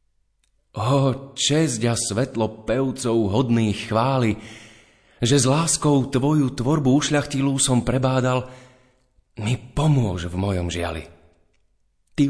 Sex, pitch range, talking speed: male, 100-130 Hz, 100 wpm